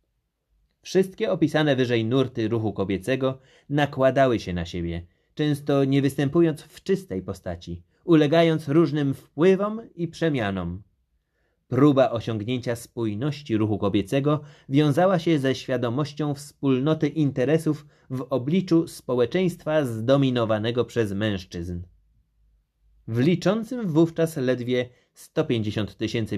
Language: Polish